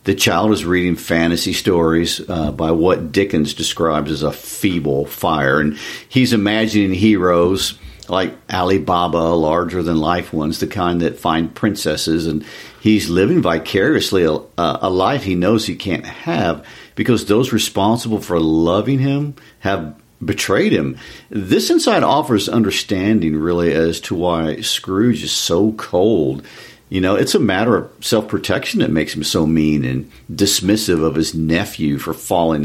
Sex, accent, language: male, American, English